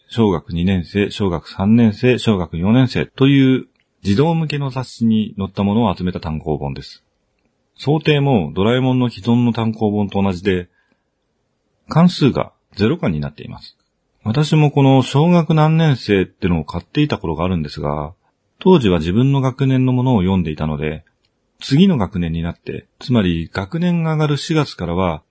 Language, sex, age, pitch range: Japanese, male, 40-59, 90-150 Hz